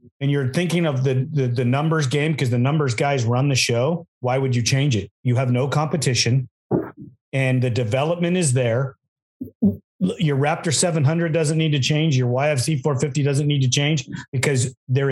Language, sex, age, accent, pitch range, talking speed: English, male, 40-59, American, 130-165 Hz, 185 wpm